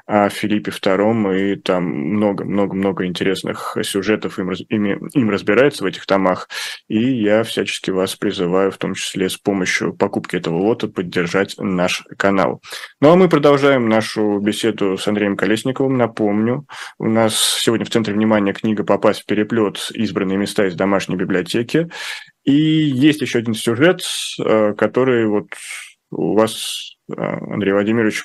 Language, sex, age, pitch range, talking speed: Russian, male, 20-39, 105-120 Hz, 140 wpm